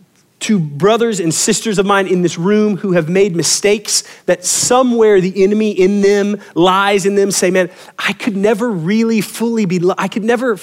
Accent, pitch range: American, 175-220 Hz